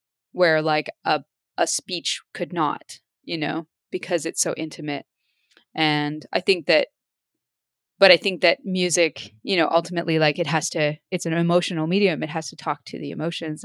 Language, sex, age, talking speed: English, female, 20-39, 175 wpm